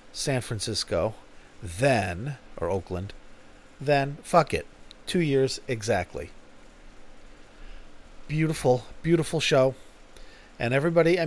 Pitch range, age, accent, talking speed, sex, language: 105-150 Hz, 40-59, American, 90 wpm, male, English